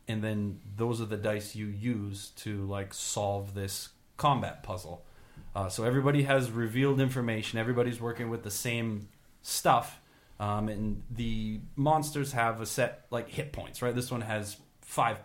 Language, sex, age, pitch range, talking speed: English, male, 30-49, 105-130 Hz, 160 wpm